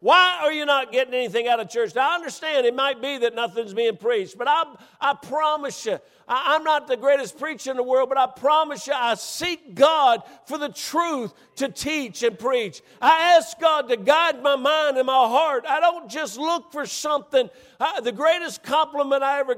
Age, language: 50-69, English